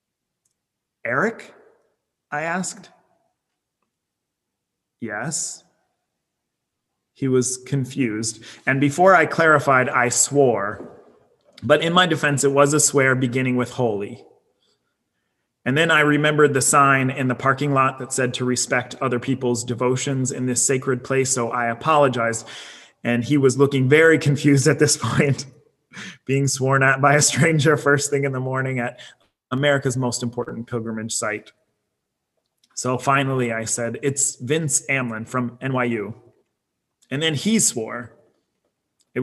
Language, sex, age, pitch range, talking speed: English, male, 30-49, 120-145 Hz, 135 wpm